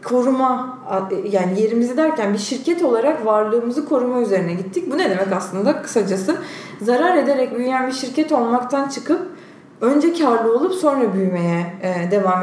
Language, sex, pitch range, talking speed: Turkish, female, 195-275 Hz, 140 wpm